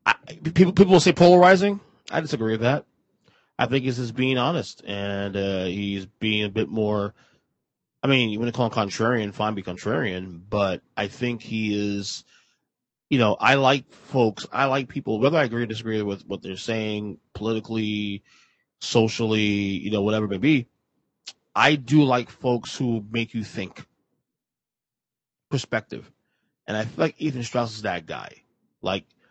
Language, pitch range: English, 105-135 Hz